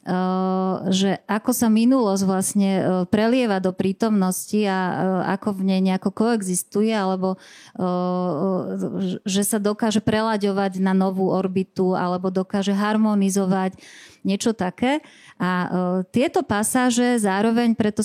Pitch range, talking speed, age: 190-220 Hz, 110 wpm, 30-49